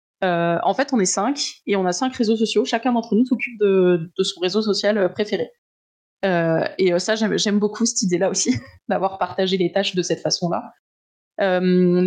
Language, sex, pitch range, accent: French, female, 180-215 Hz, French